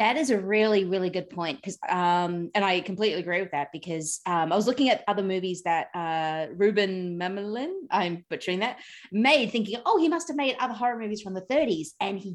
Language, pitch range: English, 180-230 Hz